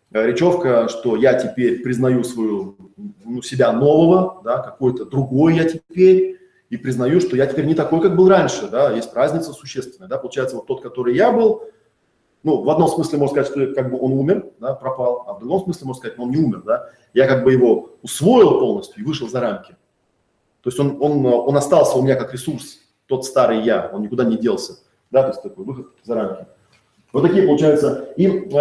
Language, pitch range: Russian, 130-180 Hz